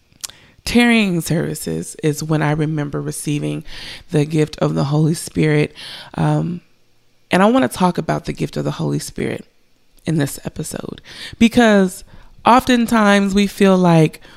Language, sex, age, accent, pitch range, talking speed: English, female, 20-39, American, 155-190 Hz, 140 wpm